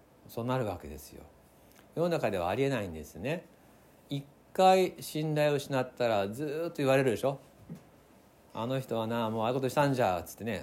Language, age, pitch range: Japanese, 60-79, 105-150 Hz